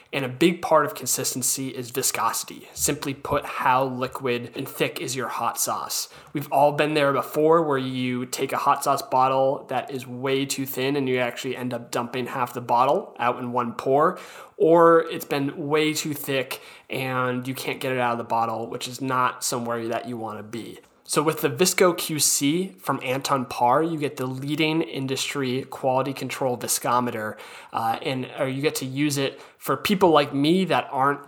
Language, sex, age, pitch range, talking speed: English, male, 20-39, 125-145 Hz, 195 wpm